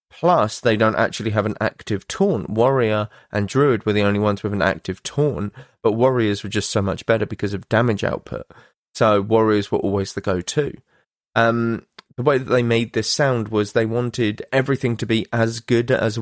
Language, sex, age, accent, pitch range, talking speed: English, male, 20-39, British, 105-130 Hz, 190 wpm